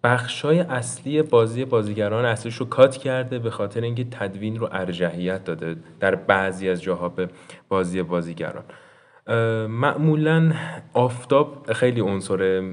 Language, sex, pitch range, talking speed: Persian, male, 95-120 Hz, 125 wpm